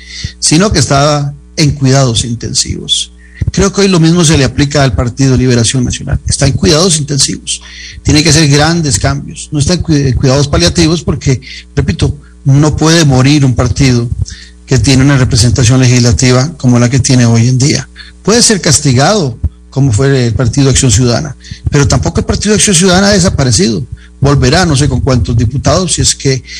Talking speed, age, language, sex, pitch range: 175 wpm, 40-59, Spanish, male, 120-145 Hz